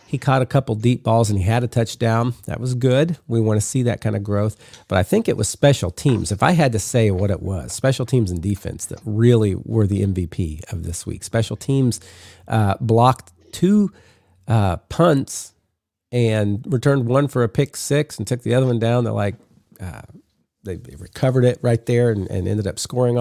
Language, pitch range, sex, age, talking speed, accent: English, 105-125 Hz, male, 40-59, 210 wpm, American